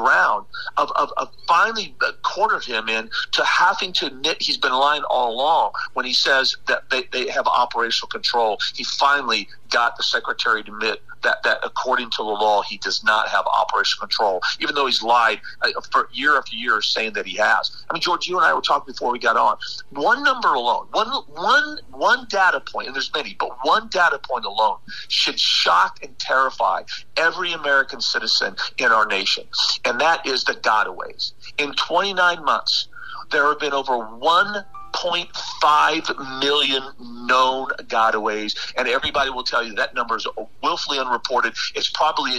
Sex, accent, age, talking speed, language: male, American, 40-59, 175 wpm, English